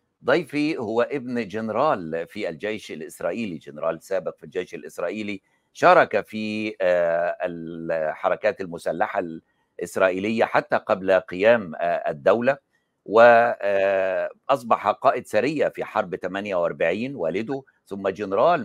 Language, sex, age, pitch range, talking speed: Arabic, male, 60-79, 95-140 Hz, 95 wpm